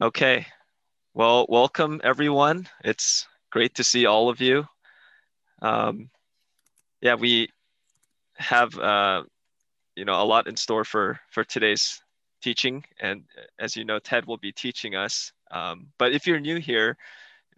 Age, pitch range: 20-39, 110-130 Hz